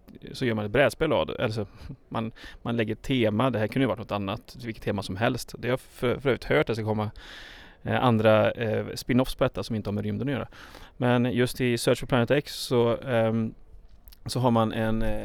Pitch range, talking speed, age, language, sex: 110-130 Hz, 210 wpm, 30-49, English, male